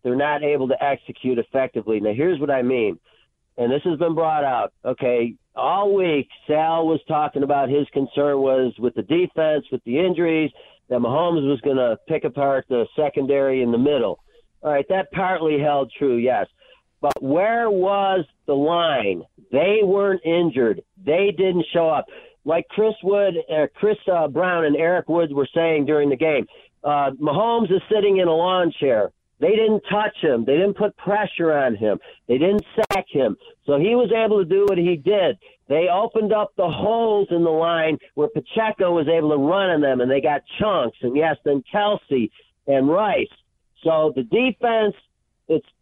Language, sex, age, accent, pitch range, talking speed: English, male, 50-69, American, 145-200 Hz, 185 wpm